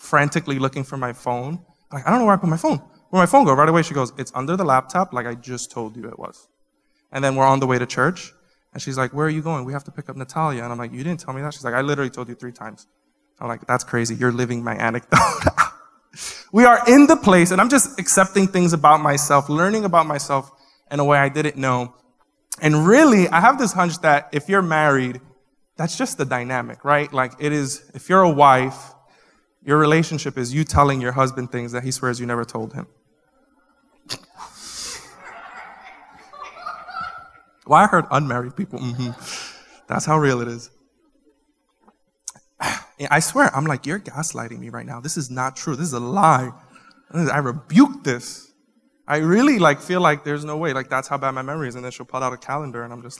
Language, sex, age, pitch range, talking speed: English, male, 20-39, 130-180 Hz, 220 wpm